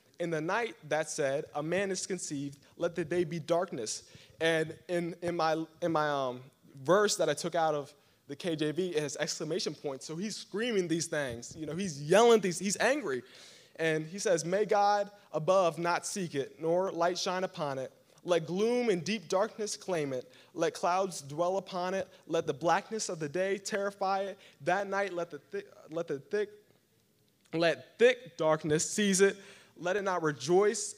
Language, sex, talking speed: English, male, 185 wpm